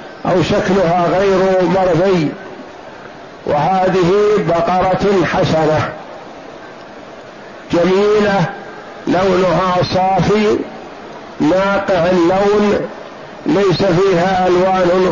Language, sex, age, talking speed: Arabic, male, 60-79, 60 wpm